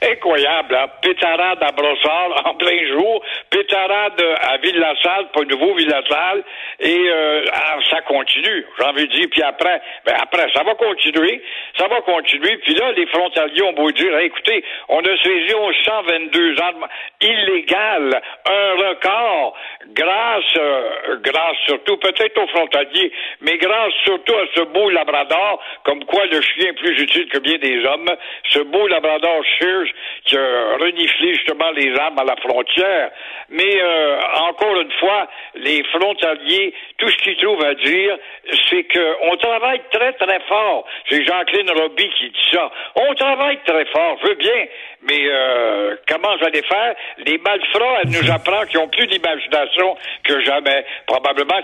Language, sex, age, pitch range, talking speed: French, male, 60-79, 150-230 Hz, 160 wpm